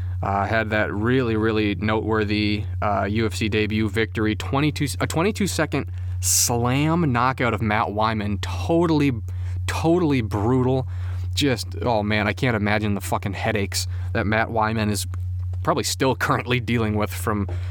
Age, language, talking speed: 30-49, English, 140 wpm